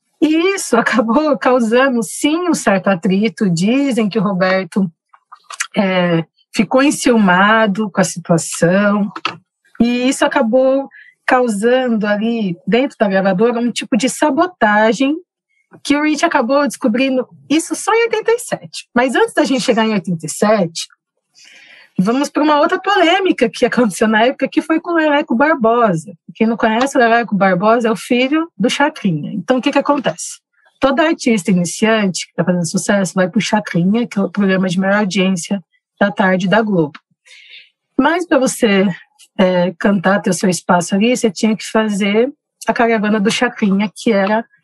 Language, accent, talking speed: Portuguese, Brazilian, 160 wpm